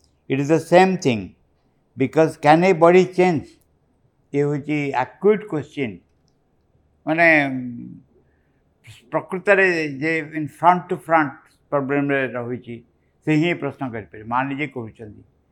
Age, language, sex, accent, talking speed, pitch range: 60-79, English, male, Indian, 110 wpm, 110-160 Hz